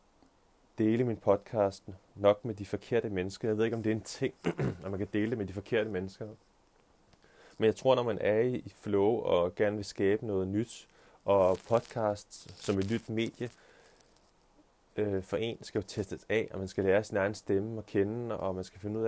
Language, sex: Danish, male